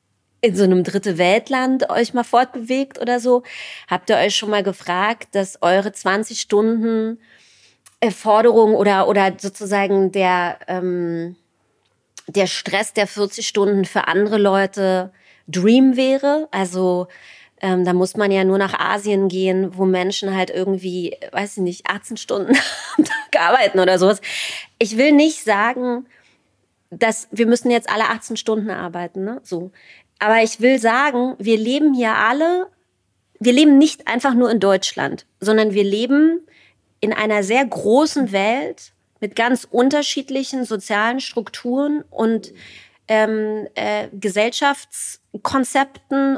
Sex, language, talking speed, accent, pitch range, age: female, German, 135 wpm, German, 195-255 Hz, 30-49